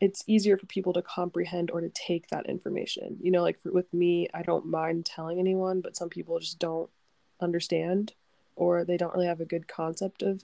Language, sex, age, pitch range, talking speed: English, female, 20-39, 170-190 Hz, 215 wpm